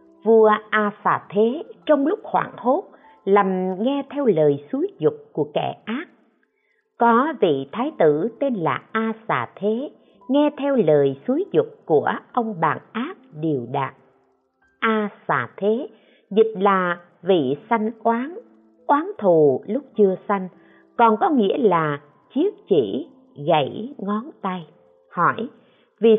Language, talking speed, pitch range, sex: Vietnamese, 125 wpm, 160-255 Hz, female